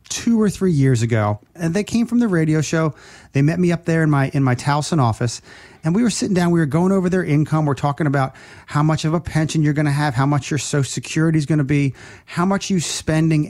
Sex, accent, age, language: male, American, 30-49, English